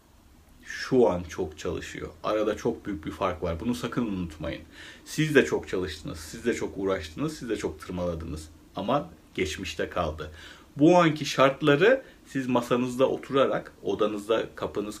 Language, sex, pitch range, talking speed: Turkish, male, 80-125 Hz, 145 wpm